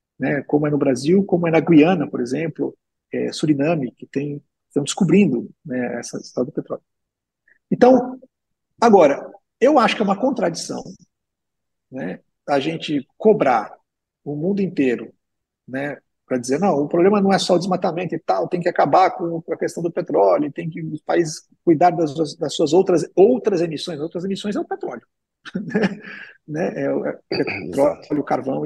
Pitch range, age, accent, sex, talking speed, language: 140-205 Hz, 50-69, Brazilian, male, 170 wpm, Portuguese